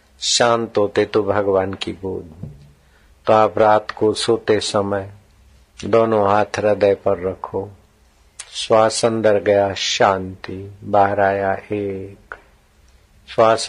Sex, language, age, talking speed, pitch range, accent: male, Hindi, 50-69, 110 wpm, 100-115 Hz, native